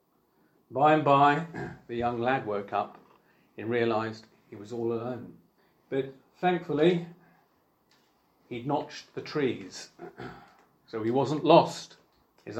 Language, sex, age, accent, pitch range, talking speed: English, male, 40-59, British, 120-155 Hz, 120 wpm